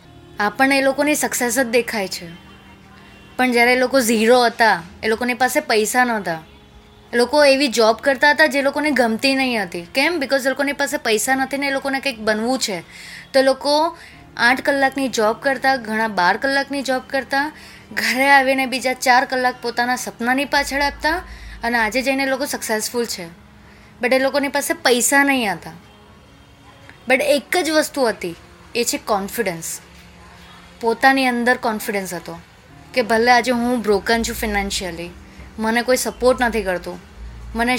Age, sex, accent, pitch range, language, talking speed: 20-39, female, native, 195-265 Hz, Gujarati, 110 wpm